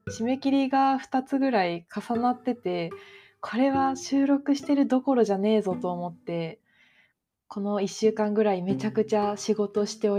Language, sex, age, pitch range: Japanese, female, 20-39, 190-245 Hz